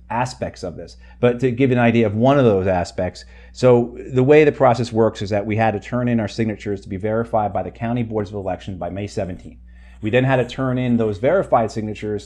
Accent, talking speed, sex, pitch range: American, 240 wpm, male, 95-120 Hz